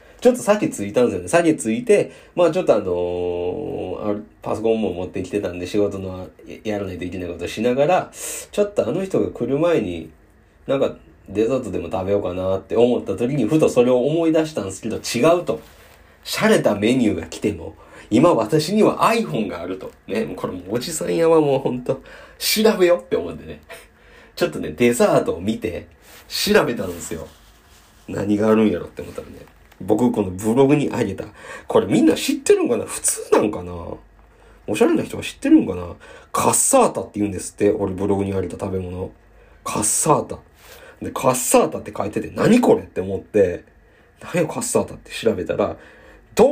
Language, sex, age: Japanese, male, 40-59